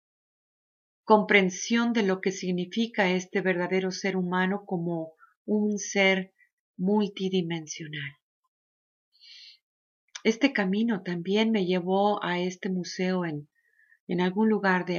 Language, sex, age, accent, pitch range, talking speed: English, female, 40-59, Mexican, 185-245 Hz, 105 wpm